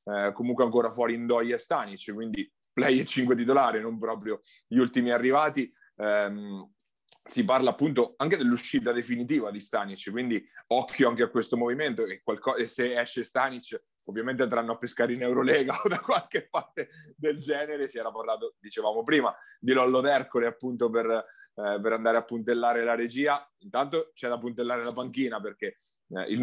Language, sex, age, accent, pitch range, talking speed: Italian, male, 30-49, native, 115-130 Hz, 170 wpm